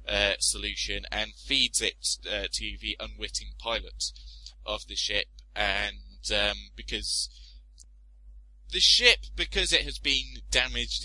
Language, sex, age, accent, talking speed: English, male, 20-39, British, 125 wpm